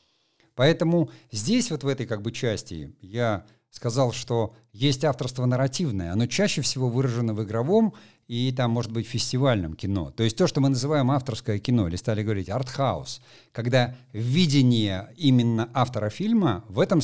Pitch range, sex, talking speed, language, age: 110-135 Hz, male, 160 wpm, Russian, 50-69